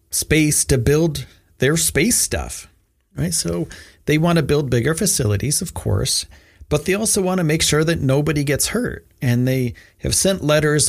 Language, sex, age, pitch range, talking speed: English, male, 40-59, 105-160 Hz, 175 wpm